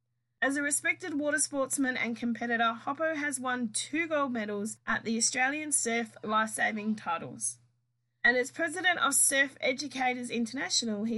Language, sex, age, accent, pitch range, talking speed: English, female, 20-39, Australian, 220-285 Hz, 145 wpm